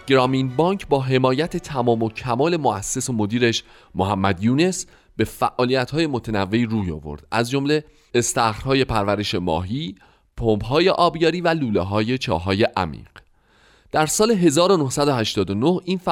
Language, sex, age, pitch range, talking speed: Persian, male, 30-49, 100-150 Hz, 120 wpm